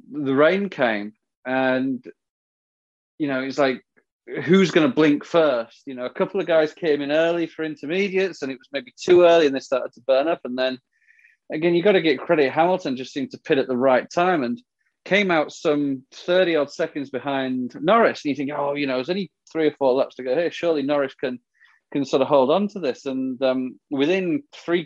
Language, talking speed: English, 215 wpm